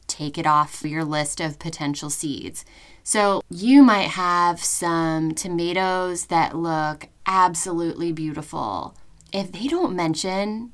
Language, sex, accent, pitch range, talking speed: English, female, American, 160-195 Hz, 125 wpm